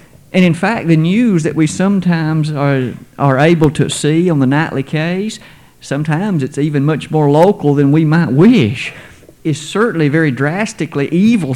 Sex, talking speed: male, 165 wpm